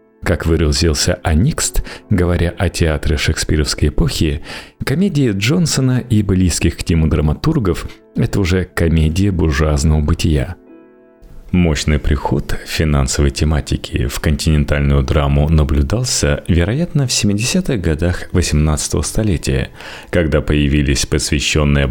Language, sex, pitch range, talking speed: Russian, male, 75-105 Hz, 105 wpm